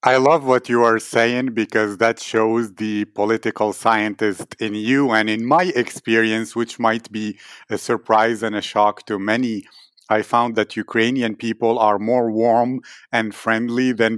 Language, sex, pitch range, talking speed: English, male, 110-120 Hz, 165 wpm